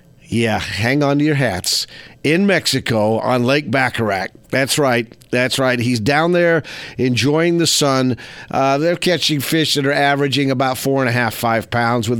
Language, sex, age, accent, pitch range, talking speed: English, male, 50-69, American, 115-140 Hz, 175 wpm